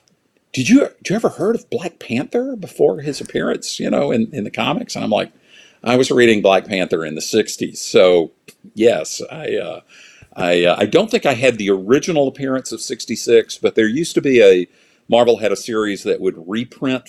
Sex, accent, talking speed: male, American, 205 wpm